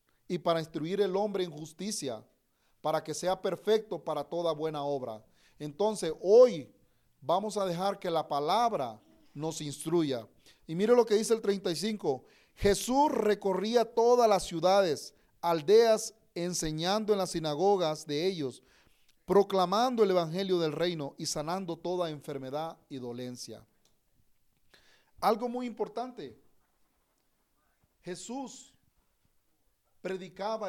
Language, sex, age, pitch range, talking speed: Spanish, male, 40-59, 155-205 Hz, 115 wpm